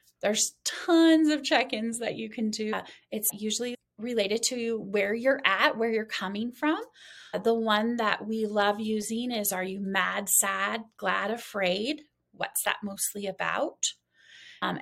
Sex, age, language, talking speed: female, 20-39, English, 160 wpm